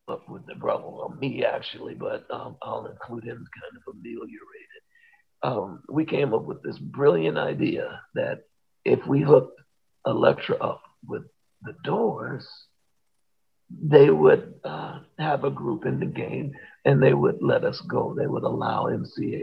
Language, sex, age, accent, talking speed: English, male, 50-69, American, 160 wpm